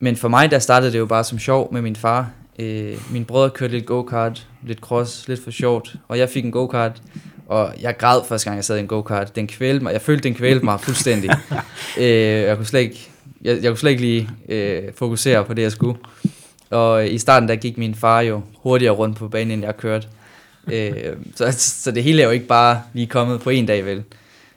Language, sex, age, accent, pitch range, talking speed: Danish, male, 20-39, native, 110-125 Hz, 215 wpm